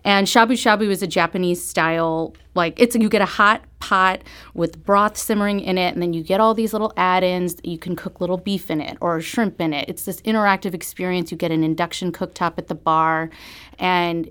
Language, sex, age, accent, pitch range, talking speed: English, female, 30-49, American, 175-220 Hz, 215 wpm